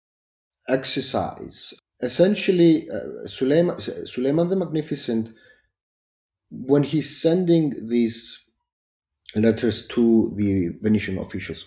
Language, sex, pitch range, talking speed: English, male, 100-145 Hz, 75 wpm